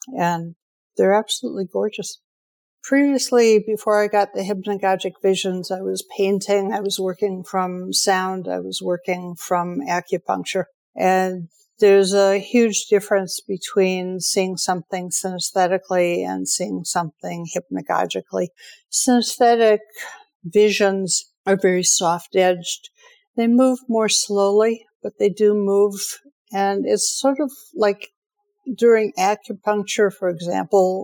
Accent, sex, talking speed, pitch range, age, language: American, female, 115 wpm, 185-220 Hz, 60-79, English